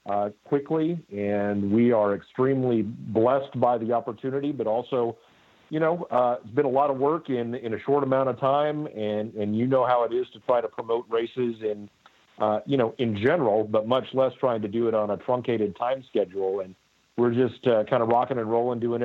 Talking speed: 215 wpm